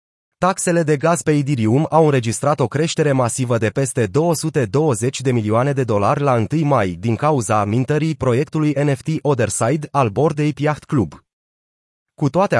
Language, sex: Romanian, male